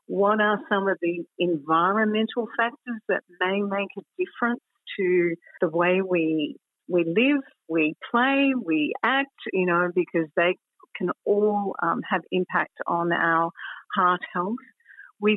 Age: 50-69